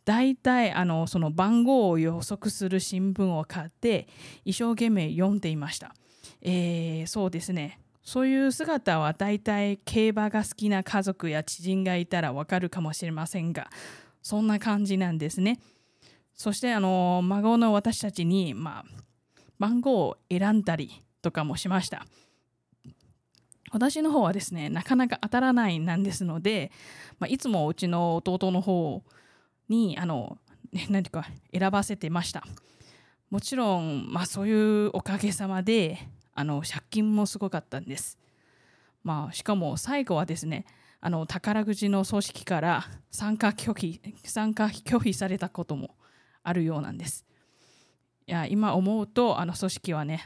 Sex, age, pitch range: female, 20-39, 165-210 Hz